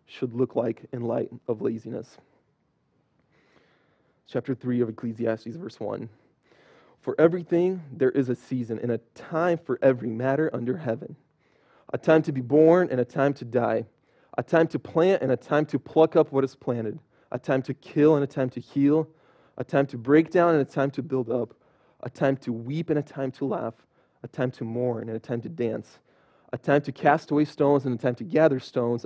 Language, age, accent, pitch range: English, 20-39, American, 120-150 Hz